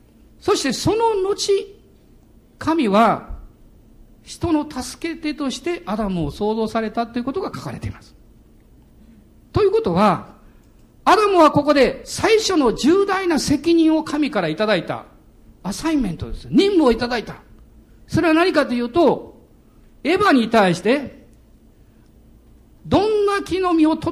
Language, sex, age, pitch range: Japanese, male, 50-69, 220-330 Hz